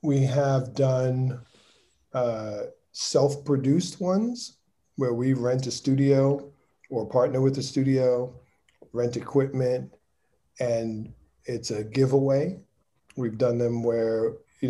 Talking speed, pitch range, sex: 110 wpm, 120-140 Hz, male